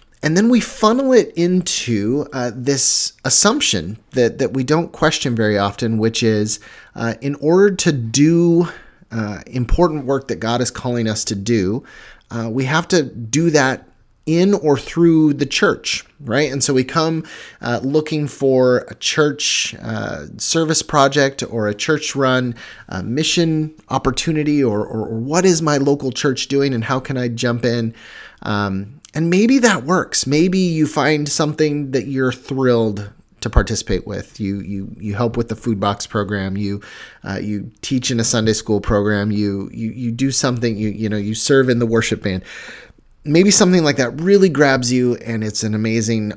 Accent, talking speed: American, 175 wpm